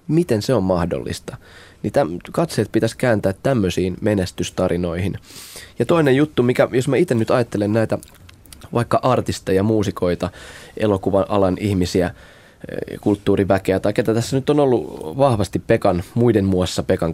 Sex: male